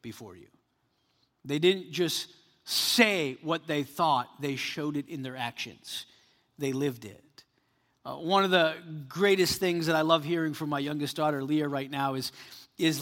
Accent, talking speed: American, 170 wpm